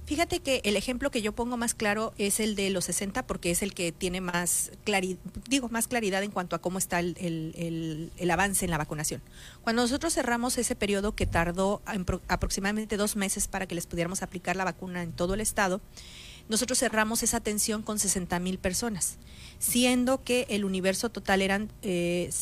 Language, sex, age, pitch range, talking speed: Spanish, female, 40-59, 185-230 Hz, 195 wpm